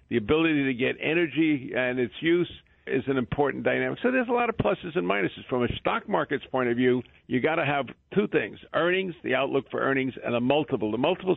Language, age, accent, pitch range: English, 50-69, American, 125-155 Hz